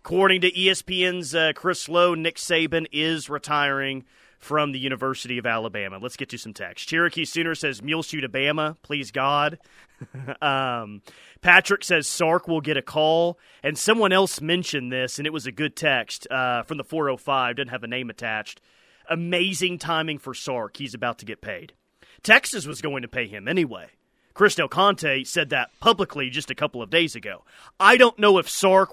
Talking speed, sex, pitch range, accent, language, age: 185 wpm, male, 145-185 Hz, American, English, 30-49